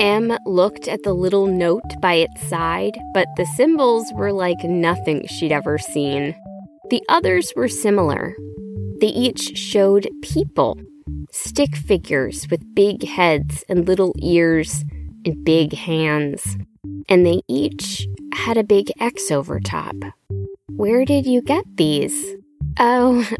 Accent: American